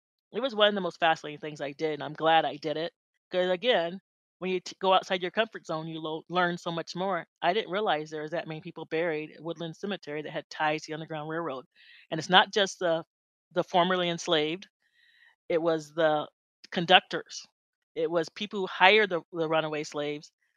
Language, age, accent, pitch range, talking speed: English, 30-49, American, 160-190 Hz, 205 wpm